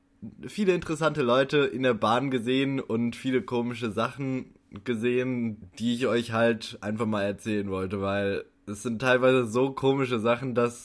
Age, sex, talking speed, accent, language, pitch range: 20-39, male, 150 wpm, German, German, 105-125 Hz